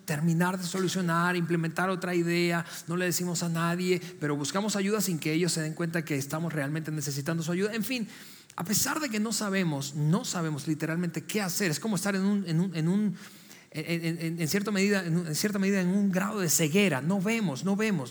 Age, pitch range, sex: 40-59, 165-220 Hz, male